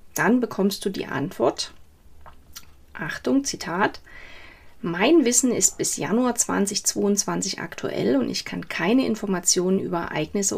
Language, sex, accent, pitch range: German, female, German, 180-245 Hz